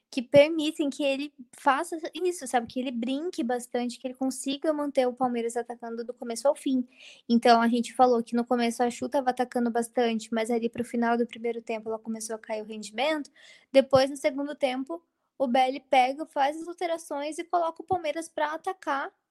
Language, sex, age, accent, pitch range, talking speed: Portuguese, female, 20-39, Brazilian, 230-280 Hz, 200 wpm